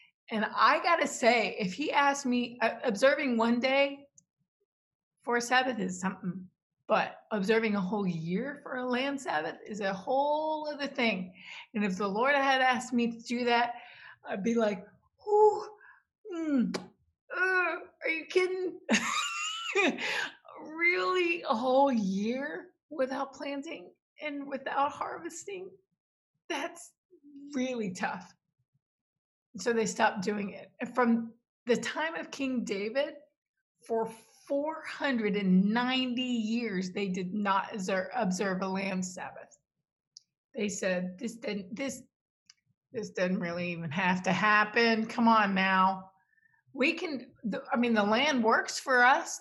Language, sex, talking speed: English, female, 130 wpm